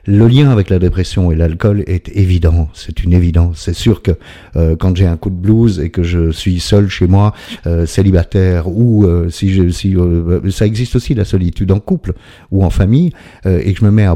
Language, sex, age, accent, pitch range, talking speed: French, male, 50-69, French, 85-105 Hz, 230 wpm